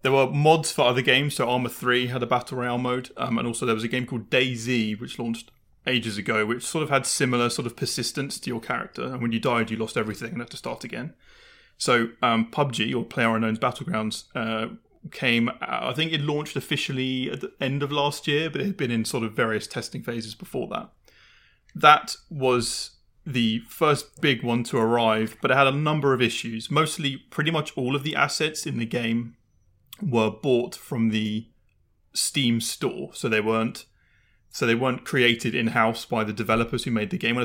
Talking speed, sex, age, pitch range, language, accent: 205 wpm, male, 30-49, 115-135 Hz, English, British